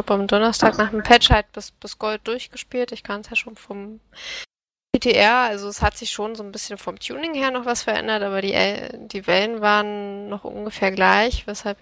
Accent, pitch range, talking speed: German, 200-235 Hz, 205 wpm